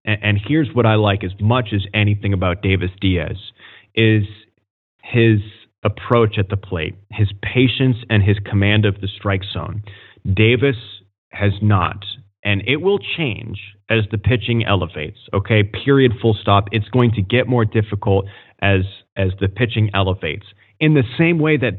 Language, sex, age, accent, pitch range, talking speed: English, male, 30-49, American, 100-125 Hz, 160 wpm